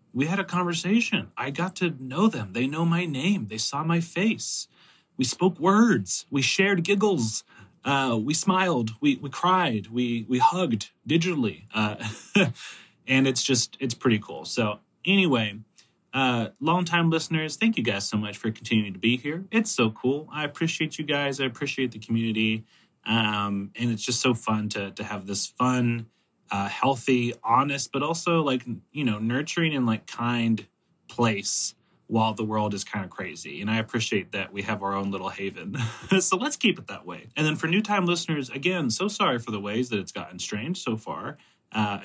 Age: 30-49